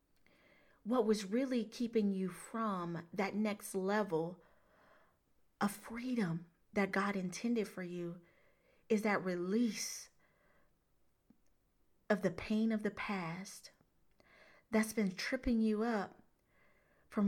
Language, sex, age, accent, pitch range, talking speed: English, female, 40-59, American, 190-215 Hz, 110 wpm